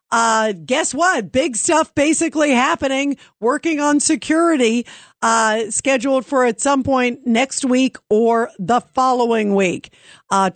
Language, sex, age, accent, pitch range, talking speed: English, female, 50-69, American, 200-245 Hz, 130 wpm